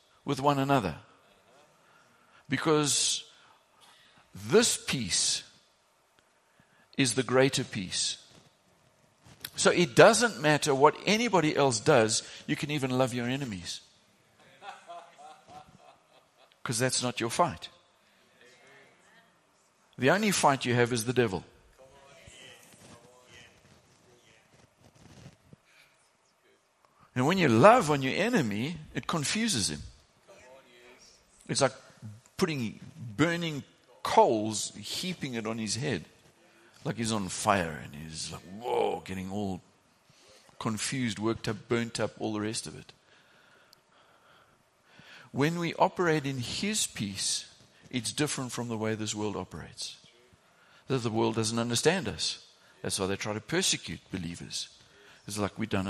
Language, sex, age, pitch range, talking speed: English, male, 60-79, 105-145 Hz, 115 wpm